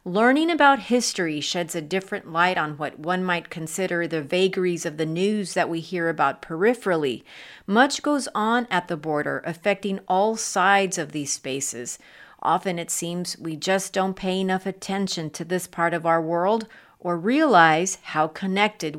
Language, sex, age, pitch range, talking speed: English, female, 40-59, 170-205 Hz, 165 wpm